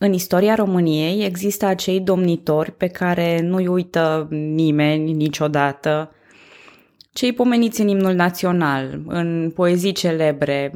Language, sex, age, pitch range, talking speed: Romanian, female, 20-39, 155-210 Hz, 110 wpm